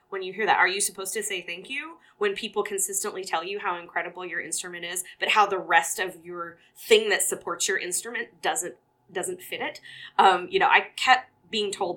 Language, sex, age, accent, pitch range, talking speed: English, female, 20-39, American, 170-230 Hz, 215 wpm